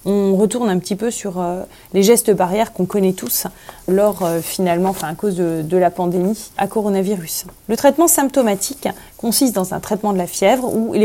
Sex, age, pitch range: female, 20-39, 190-230 Hz